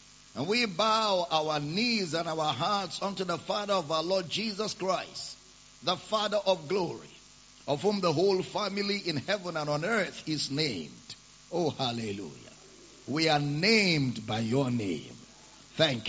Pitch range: 150-200 Hz